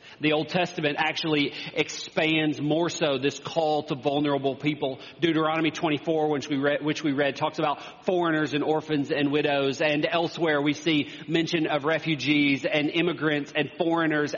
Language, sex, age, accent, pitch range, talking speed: English, male, 40-59, American, 140-160 Hz, 150 wpm